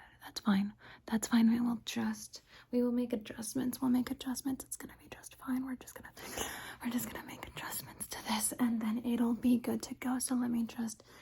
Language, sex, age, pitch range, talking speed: English, female, 20-39, 230-265 Hz, 210 wpm